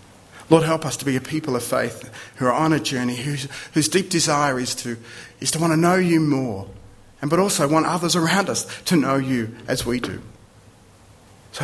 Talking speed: 210 wpm